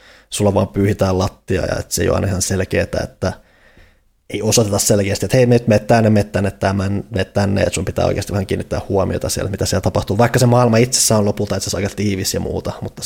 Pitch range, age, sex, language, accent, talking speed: 95-105 Hz, 20-39, male, Finnish, native, 235 wpm